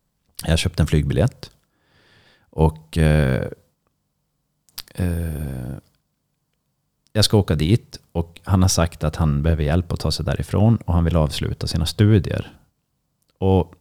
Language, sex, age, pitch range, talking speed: Swedish, male, 30-49, 80-105 Hz, 130 wpm